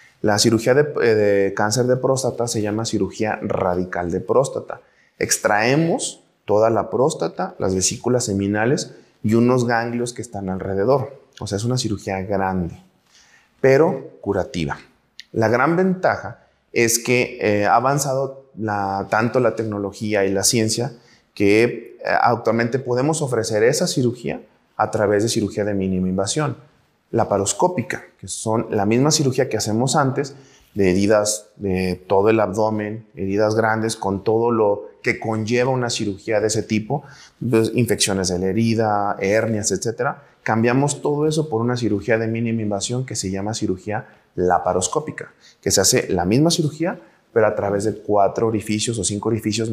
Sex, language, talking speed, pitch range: male, Spanish, 150 wpm, 100-125 Hz